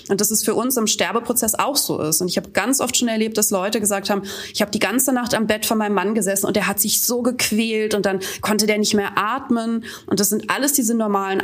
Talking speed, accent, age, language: 270 wpm, German, 20-39, German